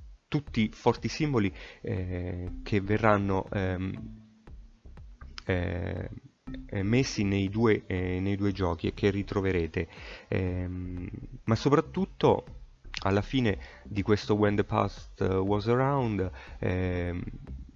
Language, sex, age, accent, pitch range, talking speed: Italian, male, 30-49, native, 90-105 Hz, 110 wpm